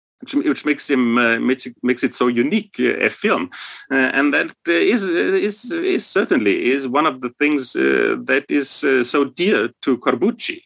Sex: male